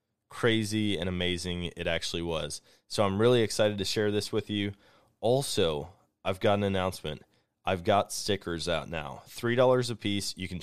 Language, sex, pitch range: English, male, 90-105 Hz